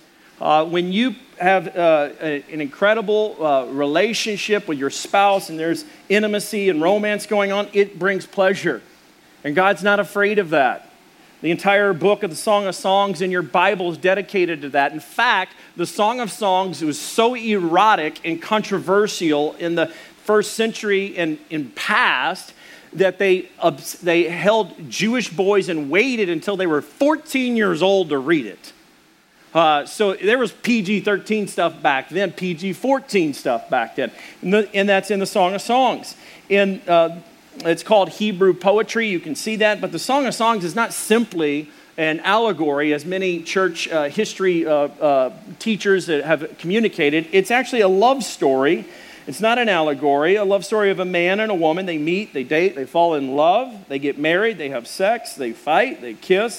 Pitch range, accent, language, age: 165-210 Hz, American, English, 40-59